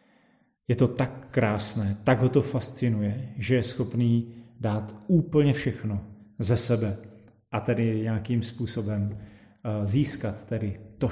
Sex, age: male, 30-49